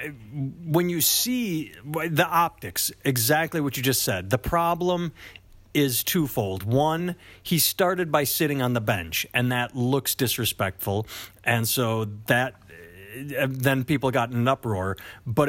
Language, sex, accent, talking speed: English, male, American, 140 wpm